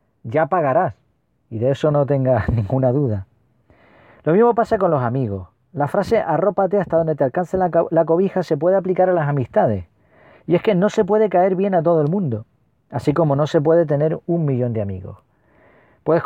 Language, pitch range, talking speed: Spanish, 130-180 Hz, 200 wpm